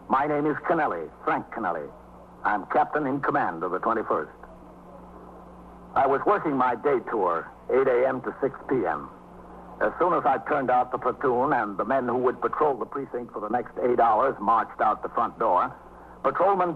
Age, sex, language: 60-79, male, English